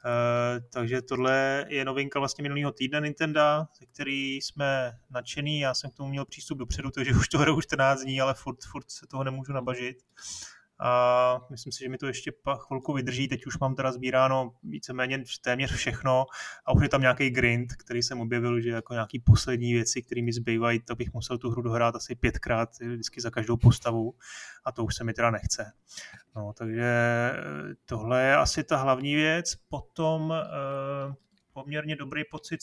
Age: 20-39